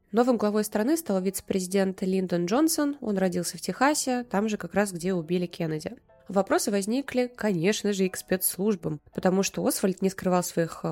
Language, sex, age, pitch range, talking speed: Russian, female, 20-39, 175-215 Hz, 170 wpm